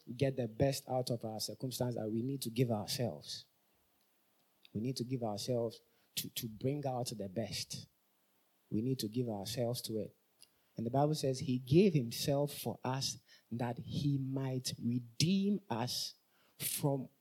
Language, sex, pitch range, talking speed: English, male, 115-150 Hz, 160 wpm